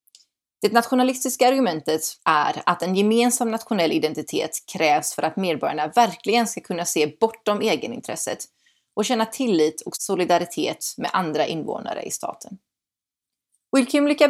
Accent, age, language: native, 30-49, Swedish